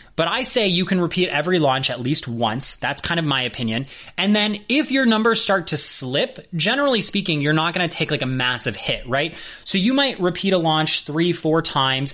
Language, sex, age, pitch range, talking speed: English, male, 20-39, 145-205 Hz, 215 wpm